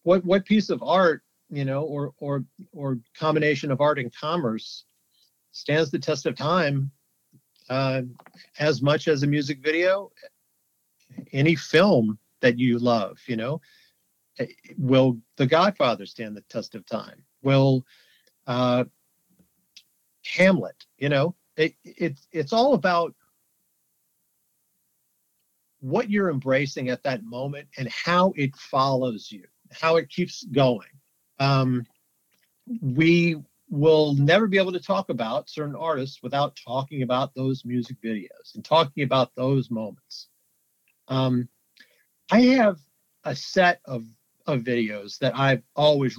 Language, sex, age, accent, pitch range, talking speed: English, male, 50-69, American, 125-165 Hz, 130 wpm